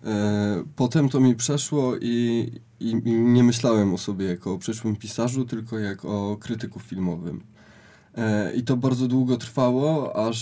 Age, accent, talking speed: 20-39, native, 145 wpm